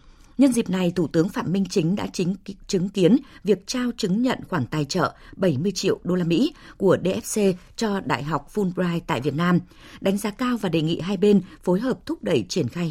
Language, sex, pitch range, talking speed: Vietnamese, female, 160-215 Hz, 220 wpm